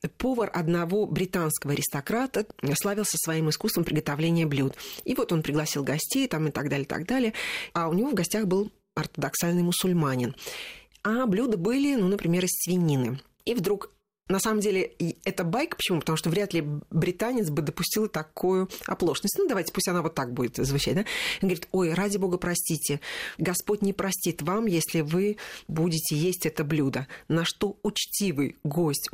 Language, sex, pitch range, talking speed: Russian, female, 155-200 Hz, 165 wpm